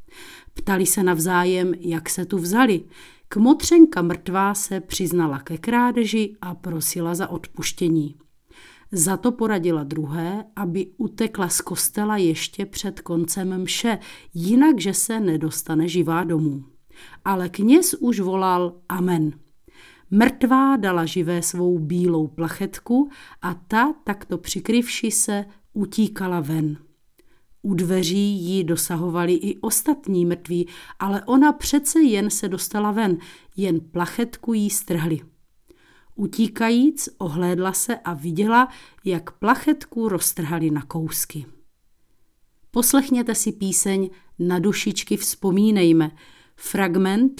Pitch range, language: 170-215 Hz, Czech